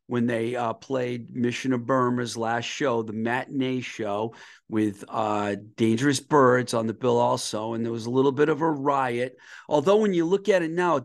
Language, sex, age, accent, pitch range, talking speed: English, male, 50-69, American, 115-140 Hz, 200 wpm